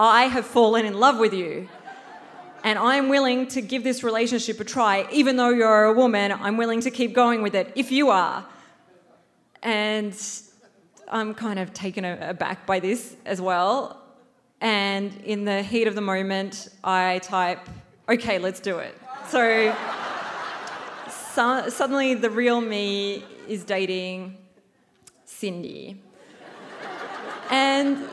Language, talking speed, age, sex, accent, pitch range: English, 135 wpm, 20-39, female, Australian, 185-240 Hz